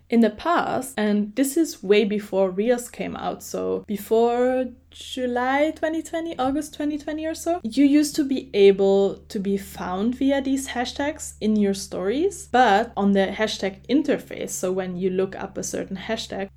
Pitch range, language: 195-245 Hz, English